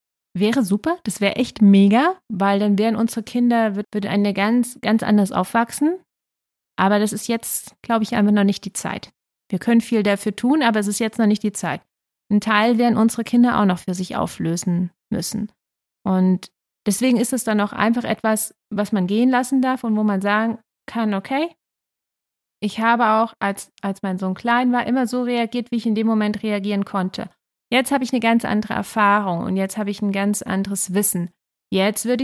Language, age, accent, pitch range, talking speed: German, 30-49, German, 200-240 Hz, 200 wpm